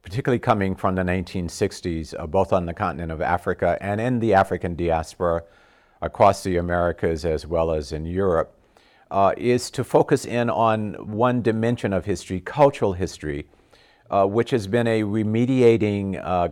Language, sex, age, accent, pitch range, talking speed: English, male, 50-69, American, 90-110 Hz, 160 wpm